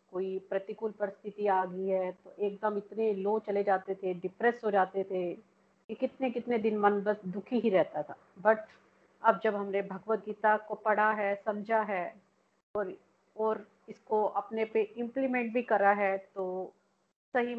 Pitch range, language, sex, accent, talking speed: 195-215 Hz, Hindi, female, native, 165 wpm